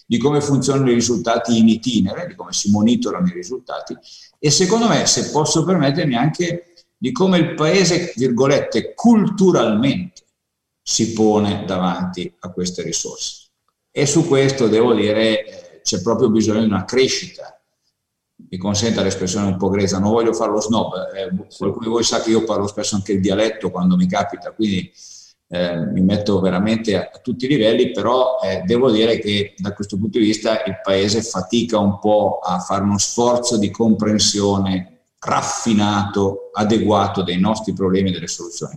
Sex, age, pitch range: male, 50-69, 100-125 Hz